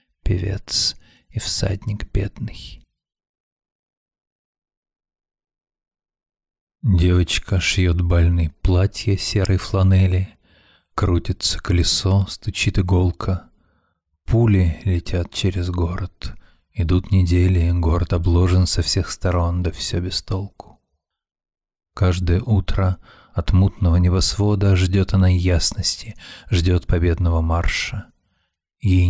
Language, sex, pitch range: Russian, male, 85-95 Hz